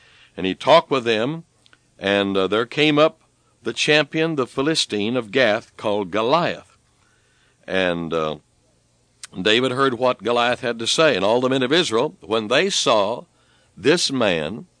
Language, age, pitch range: English, 60-79, 105-145 Hz